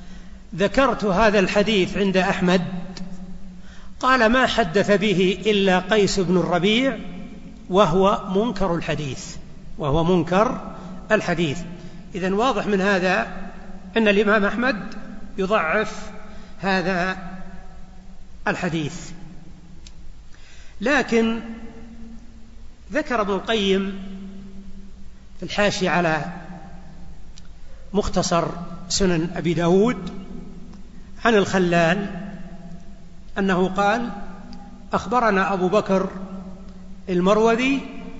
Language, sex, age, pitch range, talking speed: Arabic, male, 60-79, 180-210 Hz, 75 wpm